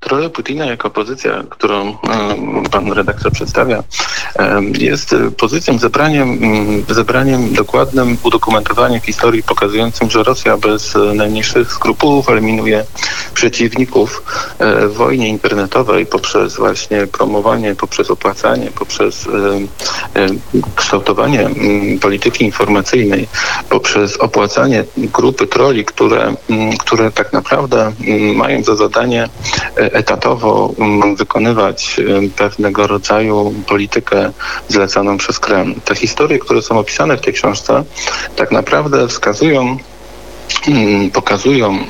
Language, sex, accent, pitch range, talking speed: Polish, male, native, 100-115 Hz, 95 wpm